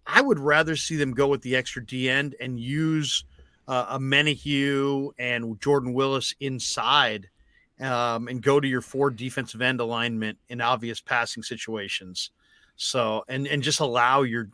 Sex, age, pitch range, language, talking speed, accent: male, 40-59, 120-155 Hz, English, 160 wpm, American